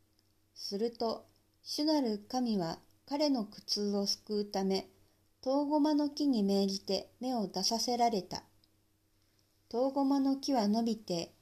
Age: 50-69